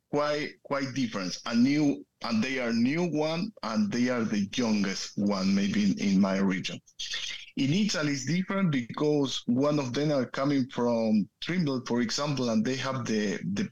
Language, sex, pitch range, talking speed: English, male, 120-185 Hz, 175 wpm